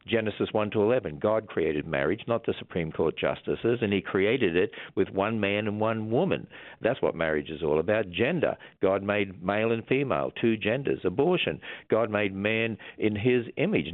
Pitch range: 95-125 Hz